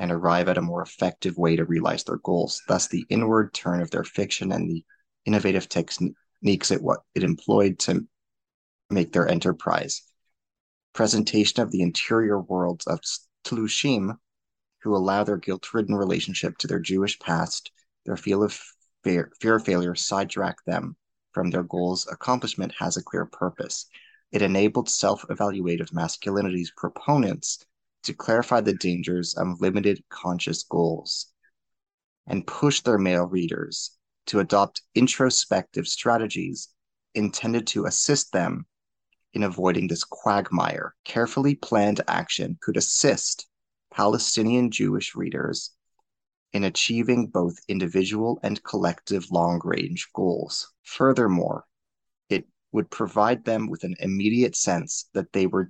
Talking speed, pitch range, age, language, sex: 130 wpm, 90-110 Hz, 20-39, English, male